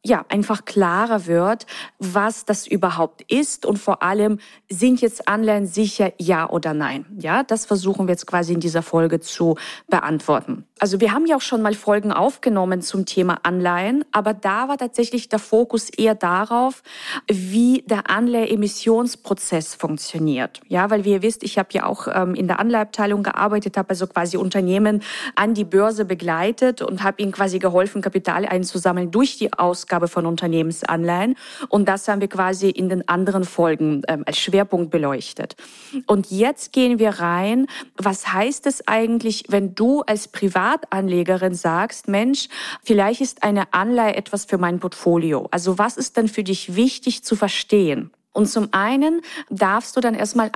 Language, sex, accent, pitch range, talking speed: German, female, German, 180-220 Hz, 165 wpm